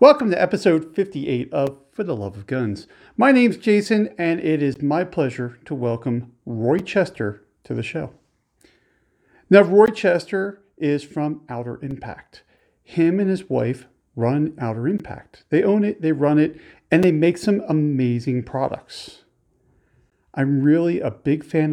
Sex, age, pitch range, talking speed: male, 40-59, 130-180 Hz, 155 wpm